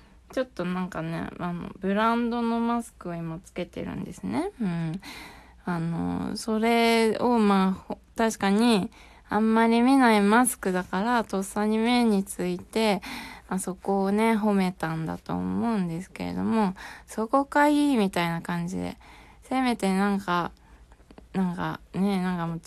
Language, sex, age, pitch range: Japanese, female, 20-39, 170-215 Hz